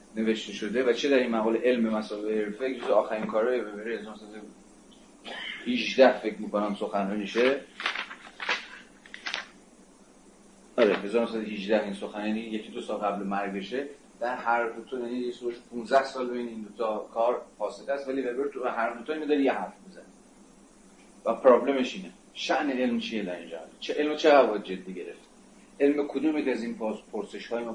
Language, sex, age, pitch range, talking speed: Persian, male, 30-49, 105-130 Hz, 170 wpm